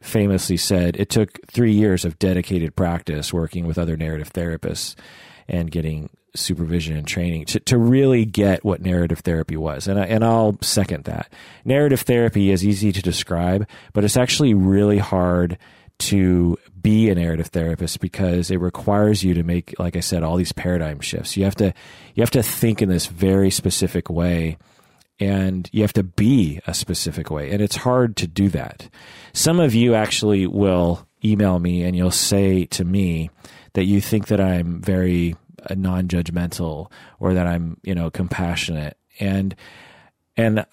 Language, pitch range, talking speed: English, 85-105 Hz, 165 wpm